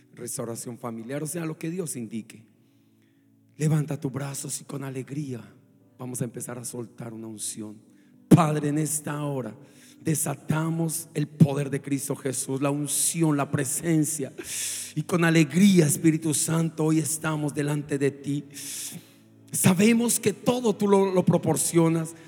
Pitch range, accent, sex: 145-215 Hz, Mexican, male